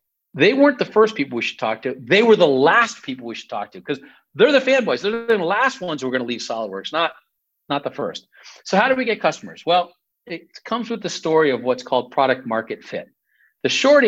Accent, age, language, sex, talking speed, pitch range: American, 50-69, English, male, 240 wpm, 120-170 Hz